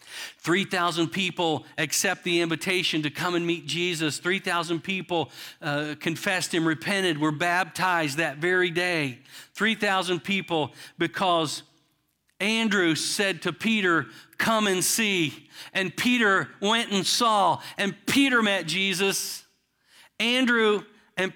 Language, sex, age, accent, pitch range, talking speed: English, male, 50-69, American, 140-185 Hz, 120 wpm